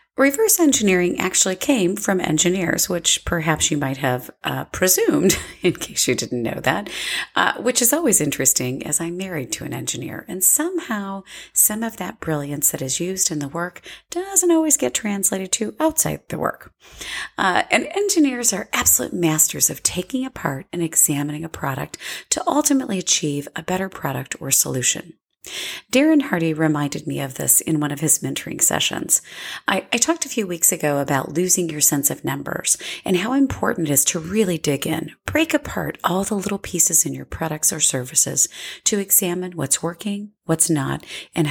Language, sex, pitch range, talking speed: English, female, 155-245 Hz, 180 wpm